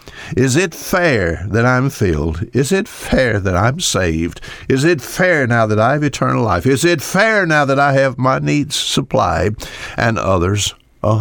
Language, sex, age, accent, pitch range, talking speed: English, male, 60-79, American, 105-140 Hz, 180 wpm